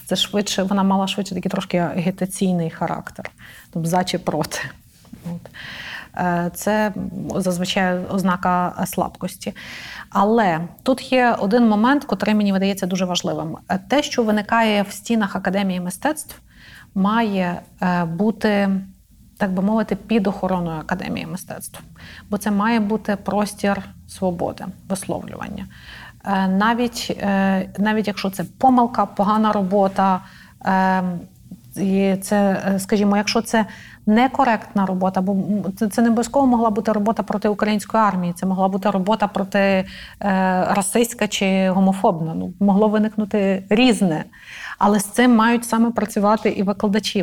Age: 30-49